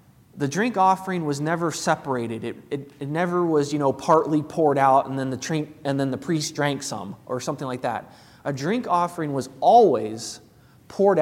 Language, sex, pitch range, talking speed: English, male, 130-160 Hz, 195 wpm